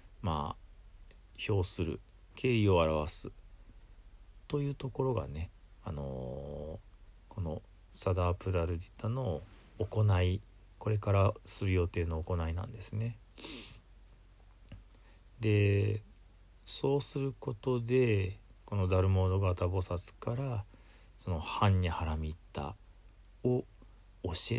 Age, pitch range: 40-59, 90-105 Hz